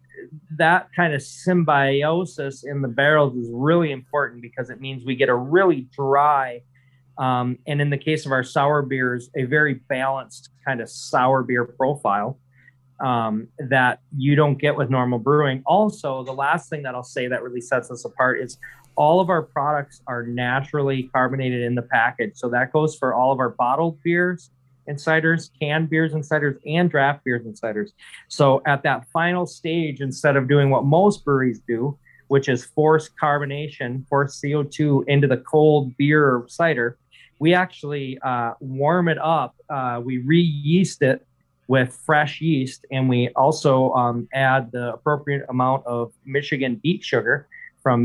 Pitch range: 125-150 Hz